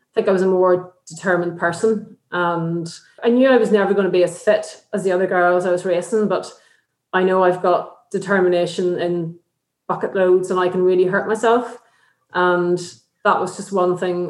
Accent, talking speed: Irish, 195 wpm